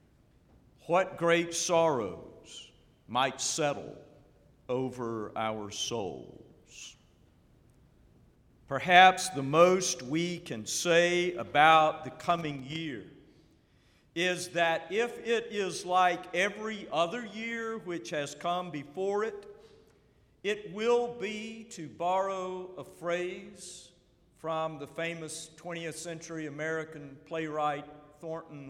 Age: 50-69